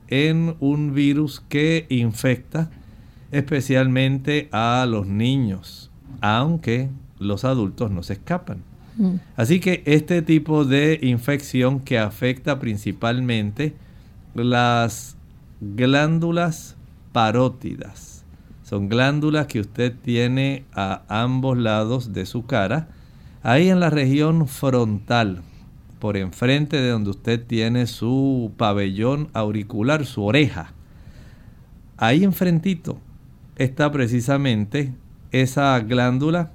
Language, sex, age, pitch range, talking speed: Spanish, male, 50-69, 110-145 Hz, 100 wpm